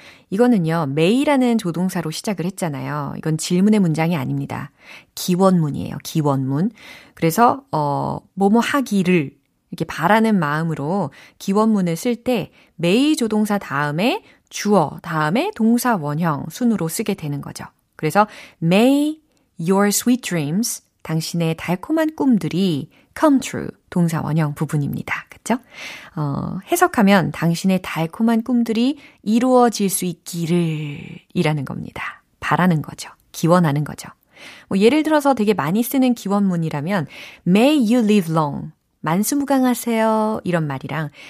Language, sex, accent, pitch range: Korean, female, native, 160-230 Hz